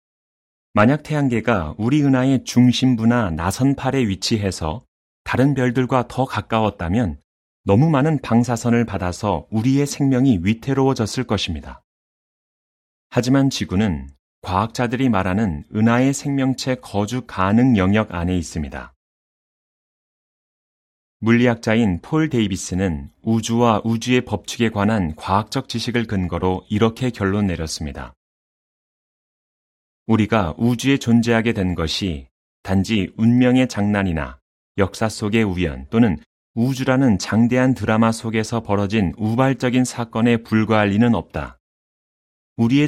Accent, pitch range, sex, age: native, 90-125 Hz, male, 30-49